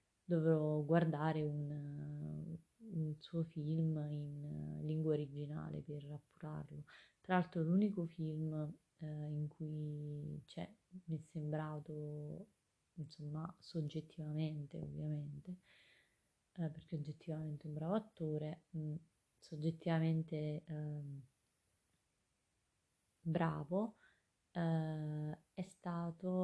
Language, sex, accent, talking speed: Italian, female, native, 90 wpm